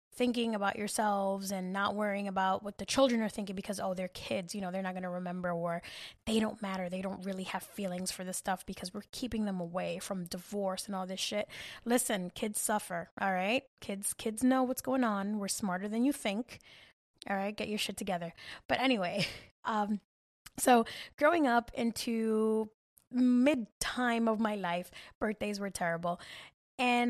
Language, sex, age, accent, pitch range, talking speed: English, female, 10-29, American, 190-235 Hz, 185 wpm